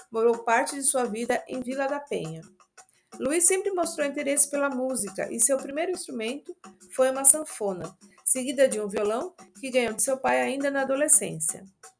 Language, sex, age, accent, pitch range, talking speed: Portuguese, female, 50-69, Brazilian, 210-270 Hz, 170 wpm